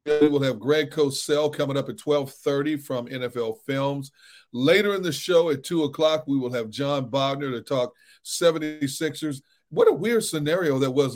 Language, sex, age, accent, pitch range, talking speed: English, male, 40-59, American, 140-170 Hz, 175 wpm